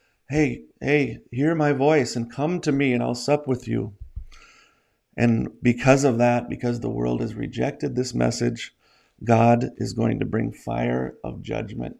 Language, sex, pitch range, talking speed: English, male, 115-130 Hz, 165 wpm